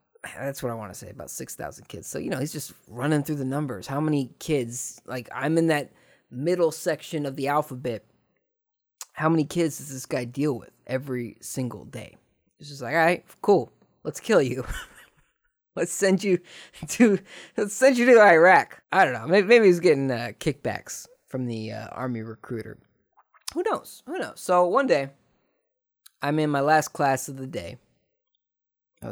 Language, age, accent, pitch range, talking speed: English, 20-39, American, 125-175 Hz, 180 wpm